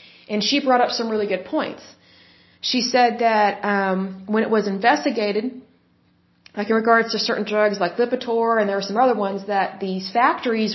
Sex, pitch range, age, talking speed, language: female, 200-240 Hz, 30-49, 185 wpm, Bengali